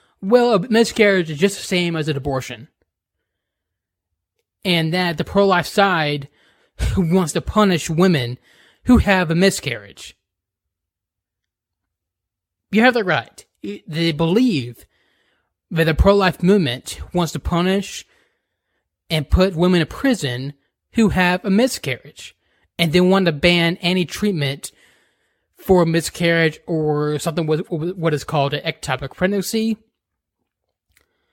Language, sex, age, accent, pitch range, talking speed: English, male, 20-39, American, 145-195 Hz, 125 wpm